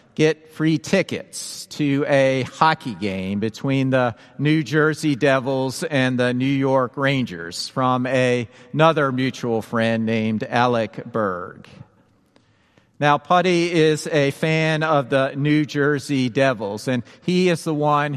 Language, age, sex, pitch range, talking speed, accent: English, 50-69, male, 125-150 Hz, 130 wpm, American